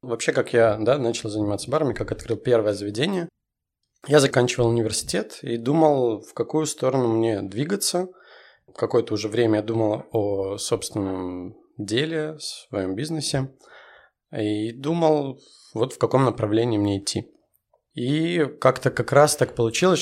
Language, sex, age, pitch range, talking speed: Russian, male, 20-39, 110-140 Hz, 130 wpm